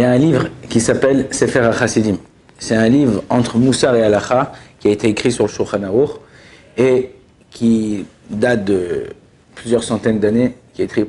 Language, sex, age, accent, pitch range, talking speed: French, male, 50-69, French, 120-155 Hz, 180 wpm